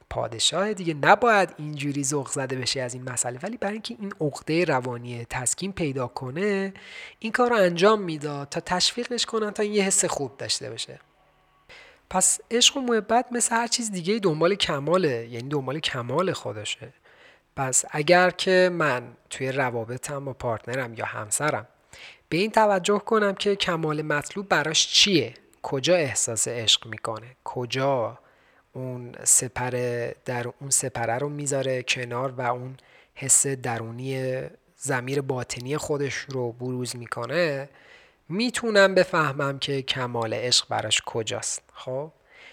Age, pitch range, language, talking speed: 30-49, 130-190 Hz, Persian, 135 wpm